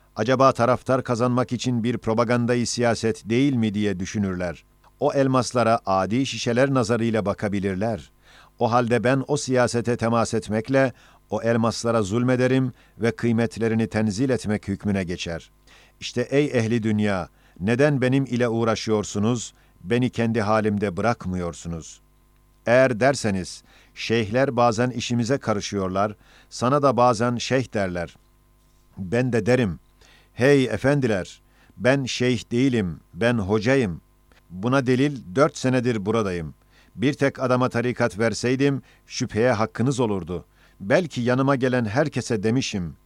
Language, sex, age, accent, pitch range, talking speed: Turkish, male, 50-69, native, 105-130 Hz, 115 wpm